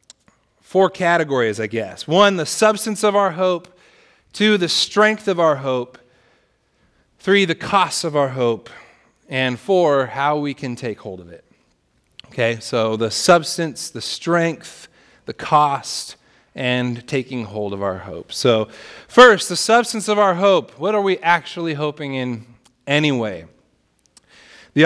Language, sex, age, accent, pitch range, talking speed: English, male, 30-49, American, 145-200 Hz, 145 wpm